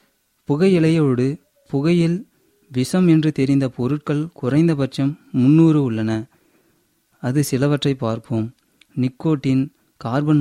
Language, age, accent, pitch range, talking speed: Tamil, 30-49, native, 125-155 Hz, 80 wpm